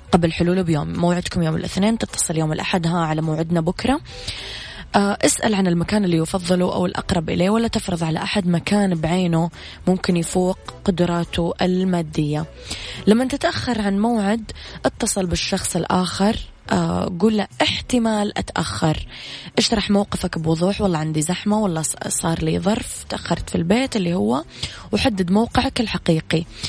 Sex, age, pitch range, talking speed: female, 20-39, 165-200 Hz, 135 wpm